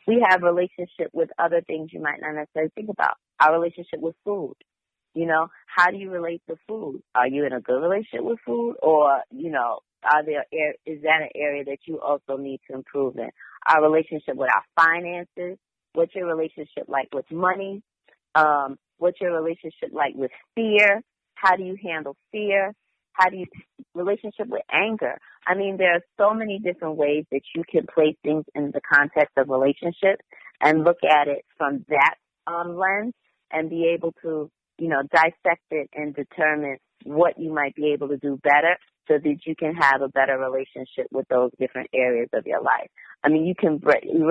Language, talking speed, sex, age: English, 190 wpm, female, 30-49